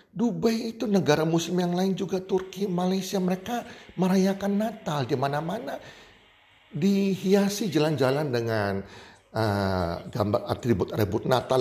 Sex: male